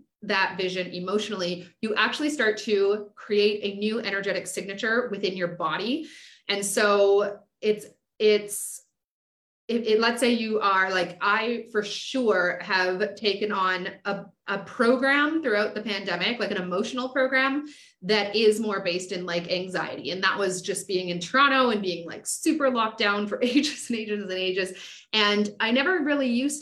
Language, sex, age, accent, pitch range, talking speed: English, female, 30-49, American, 185-235 Hz, 165 wpm